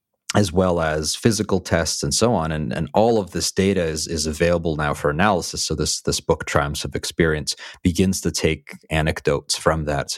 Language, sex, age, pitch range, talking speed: English, male, 30-49, 75-90 Hz, 200 wpm